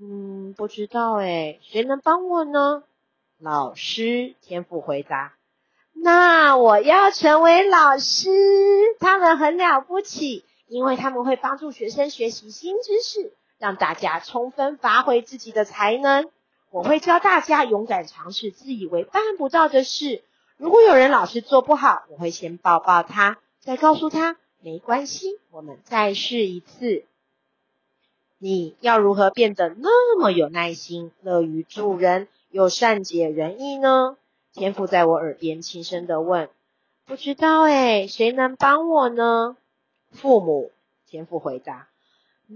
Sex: female